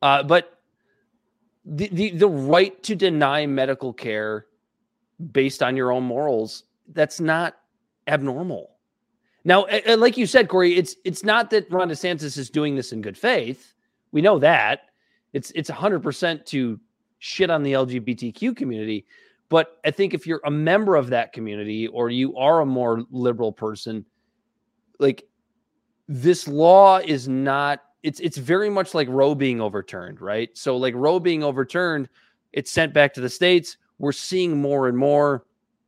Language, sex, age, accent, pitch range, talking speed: English, male, 30-49, American, 130-185 Hz, 155 wpm